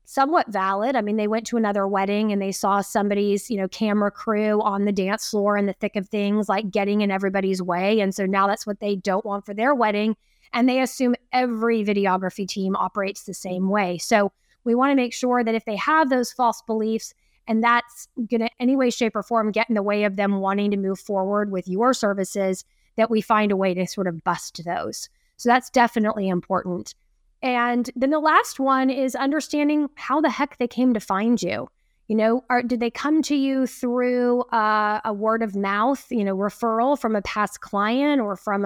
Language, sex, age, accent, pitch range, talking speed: English, female, 20-39, American, 200-240 Hz, 215 wpm